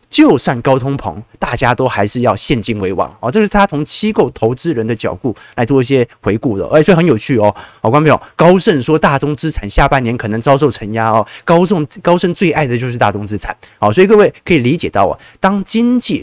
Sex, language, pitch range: male, Chinese, 115-175 Hz